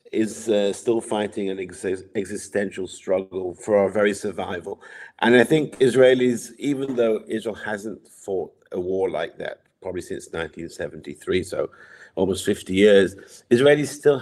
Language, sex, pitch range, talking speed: English, male, 100-140 Hz, 140 wpm